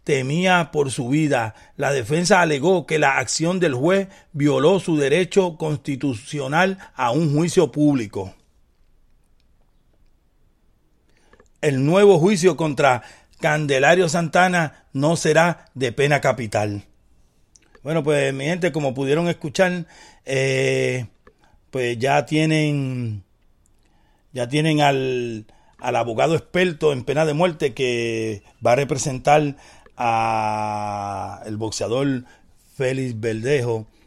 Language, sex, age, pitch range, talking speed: Spanish, male, 40-59, 120-155 Hz, 105 wpm